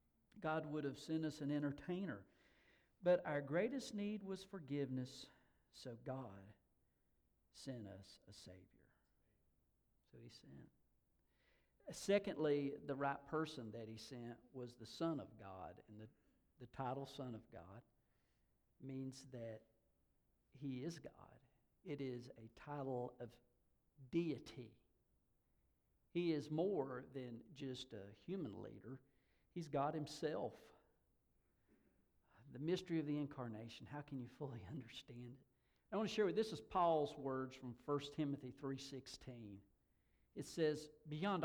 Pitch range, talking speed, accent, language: 120-160 Hz, 130 wpm, American, English